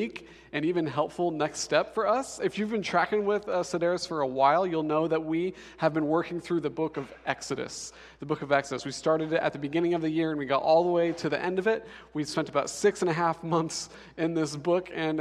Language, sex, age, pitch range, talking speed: English, male, 40-59, 155-185 Hz, 255 wpm